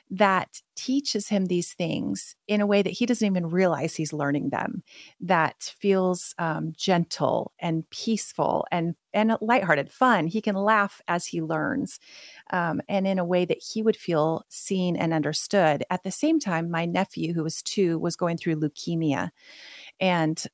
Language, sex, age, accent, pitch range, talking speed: English, female, 30-49, American, 170-215 Hz, 170 wpm